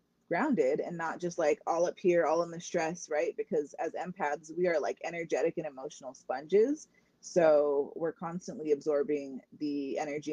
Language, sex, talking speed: English, female, 170 wpm